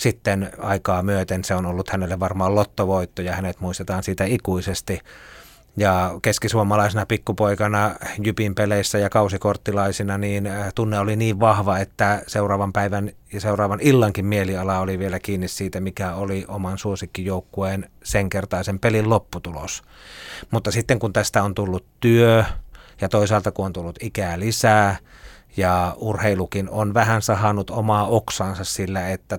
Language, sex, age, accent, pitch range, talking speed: Finnish, male, 30-49, native, 95-110 Hz, 140 wpm